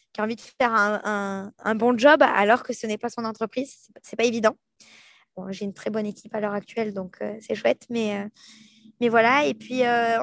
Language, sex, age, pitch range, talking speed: French, female, 20-39, 220-250 Hz, 245 wpm